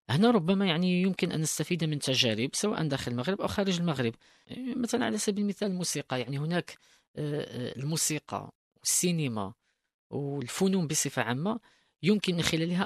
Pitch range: 125-175 Hz